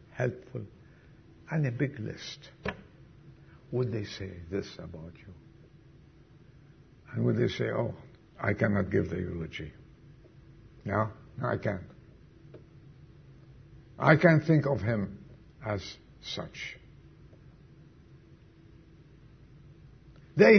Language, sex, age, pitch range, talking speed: English, male, 60-79, 125-180 Hz, 95 wpm